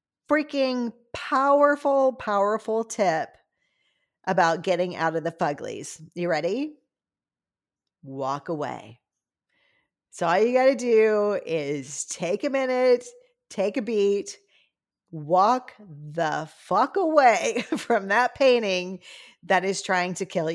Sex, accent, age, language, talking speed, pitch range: female, American, 40-59, English, 115 wpm, 160-245 Hz